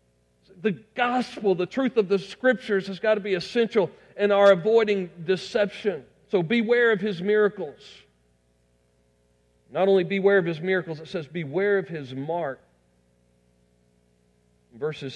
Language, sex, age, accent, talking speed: English, male, 50-69, American, 135 wpm